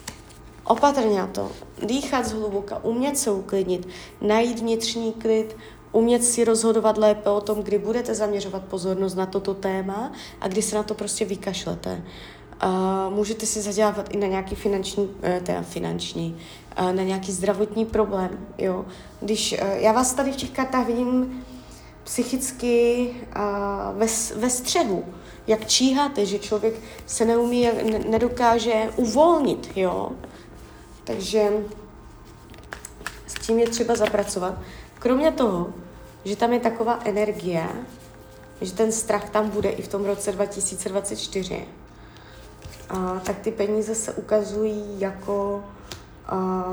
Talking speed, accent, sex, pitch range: 130 wpm, native, female, 190-225 Hz